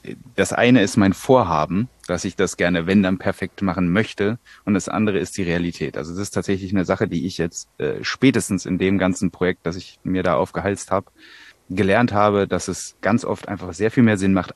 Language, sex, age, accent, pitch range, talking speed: German, male, 30-49, German, 90-110 Hz, 220 wpm